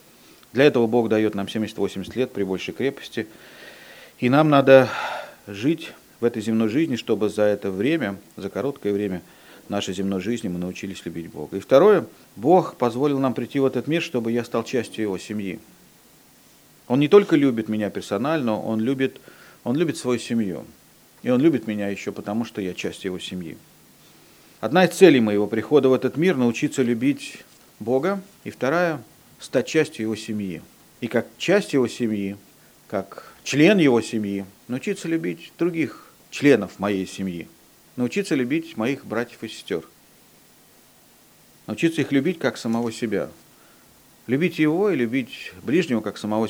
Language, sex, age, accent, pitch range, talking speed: Russian, male, 40-59, native, 105-140 Hz, 155 wpm